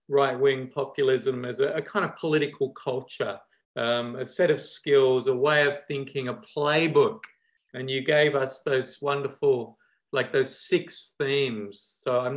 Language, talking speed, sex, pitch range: English, 155 wpm, male, 130-195 Hz